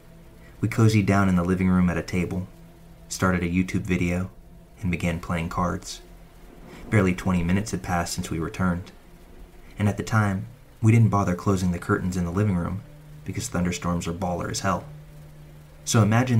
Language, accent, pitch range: English, American, 90-105 Hz